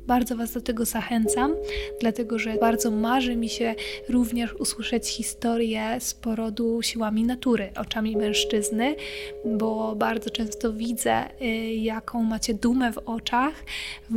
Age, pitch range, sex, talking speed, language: 20-39, 215-245 Hz, female, 125 wpm, Polish